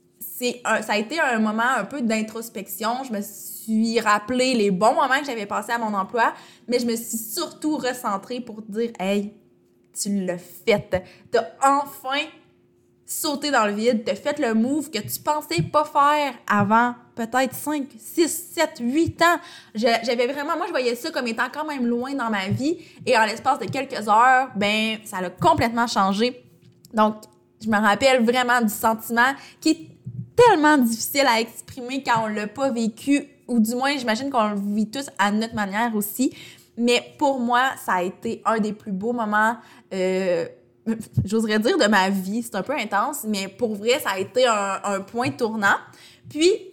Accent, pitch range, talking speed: Canadian, 205-260 Hz, 190 wpm